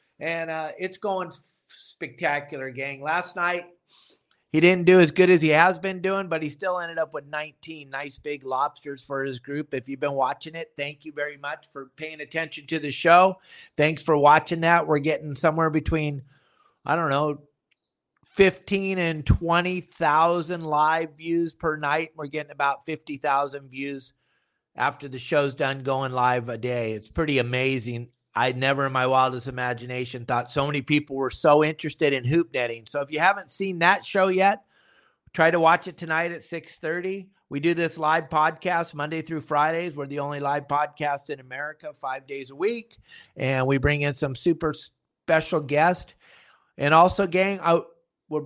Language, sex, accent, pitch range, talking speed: English, male, American, 140-175 Hz, 180 wpm